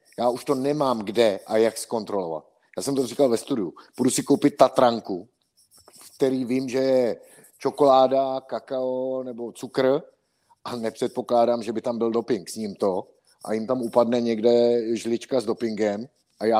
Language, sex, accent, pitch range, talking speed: Czech, male, native, 105-125 Hz, 165 wpm